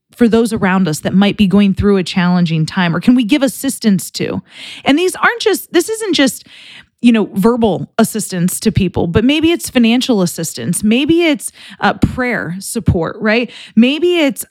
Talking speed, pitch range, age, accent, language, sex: 180 wpm, 195-275 Hz, 20-39, American, English, female